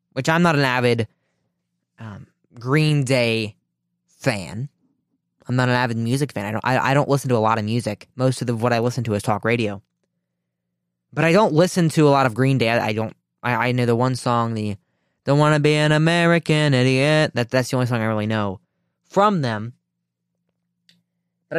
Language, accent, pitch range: English, American, 110-160 Hz